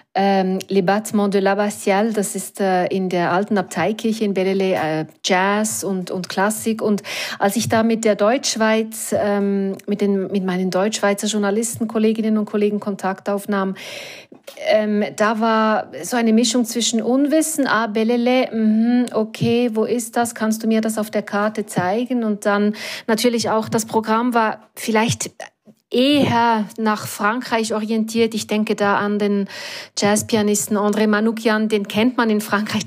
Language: German